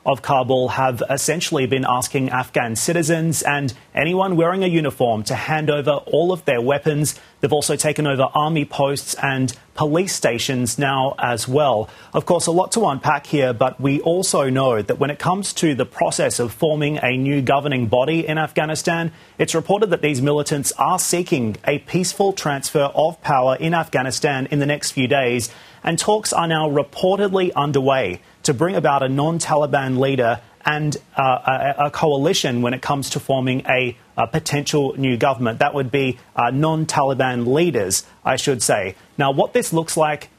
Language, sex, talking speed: English, male, 175 wpm